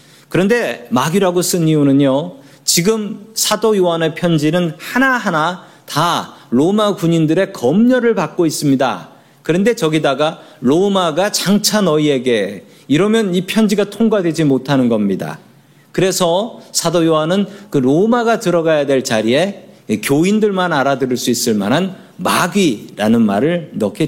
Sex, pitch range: male, 150-210 Hz